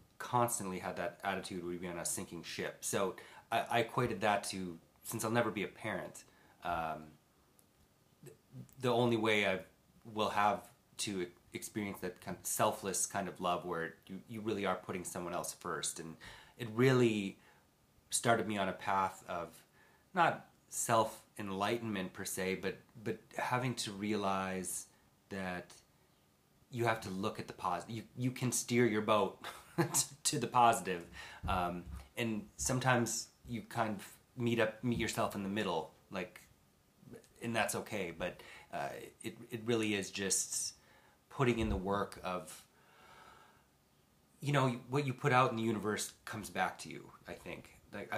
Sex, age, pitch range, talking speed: male, 30-49, 95-115 Hz, 155 wpm